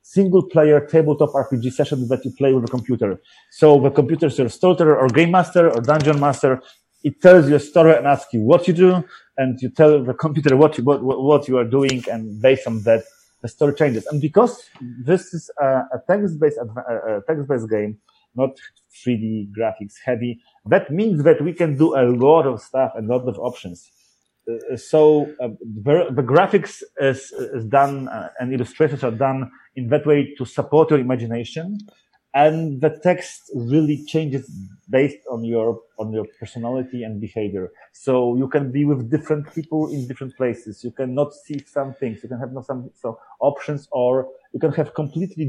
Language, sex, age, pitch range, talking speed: English, male, 30-49, 125-155 Hz, 185 wpm